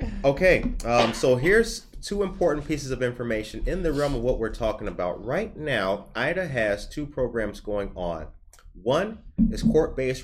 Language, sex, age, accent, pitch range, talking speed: English, male, 30-49, American, 100-125 Hz, 165 wpm